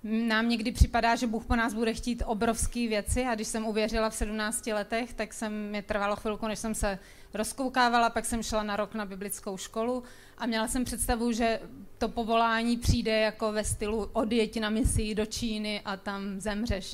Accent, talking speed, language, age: native, 190 wpm, Czech, 30-49